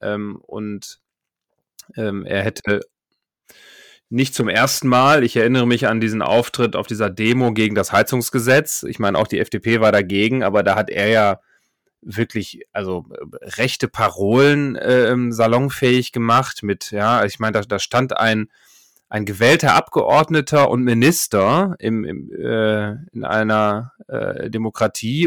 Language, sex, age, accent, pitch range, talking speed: German, male, 30-49, German, 105-125 Hz, 140 wpm